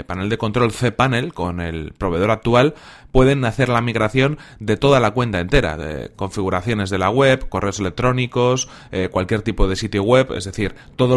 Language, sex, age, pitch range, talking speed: Spanish, male, 30-49, 100-130 Hz, 185 wpm